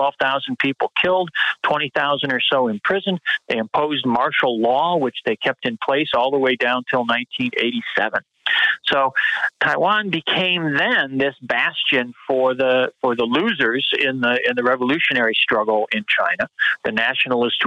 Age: 50-69